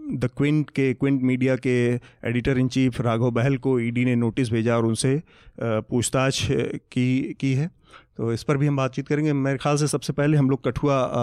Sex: male